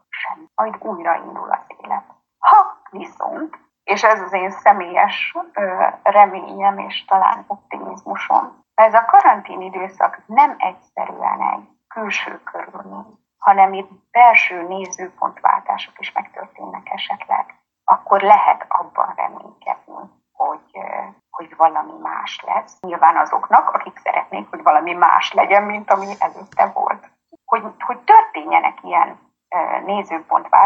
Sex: female